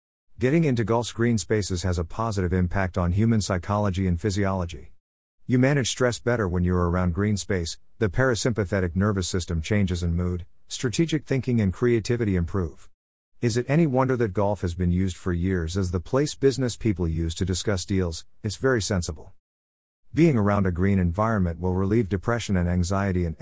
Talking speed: 180 wpm